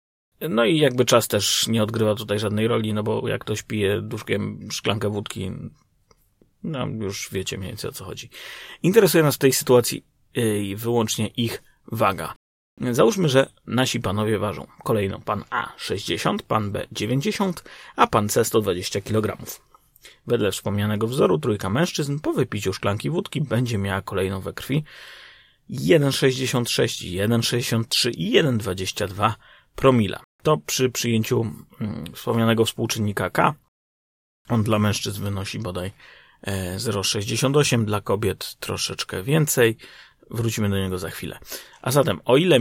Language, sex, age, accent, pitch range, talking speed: Polish, male, 30-49, native, 105-125 Hz, 135 wpm